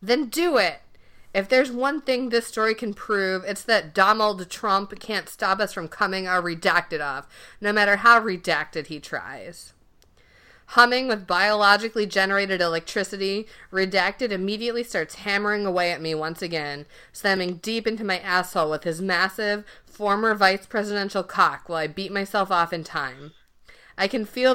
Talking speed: 160 wpm